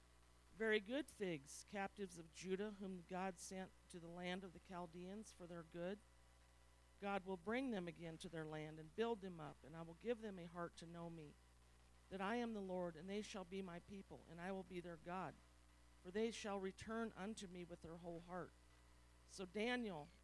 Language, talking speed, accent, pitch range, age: English, 205 wpm, American, 145-200 Hz, 50-69